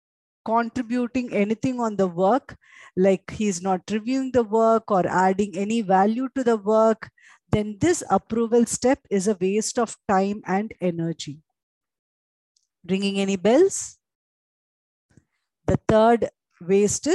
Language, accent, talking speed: English, Indian, 125 wpm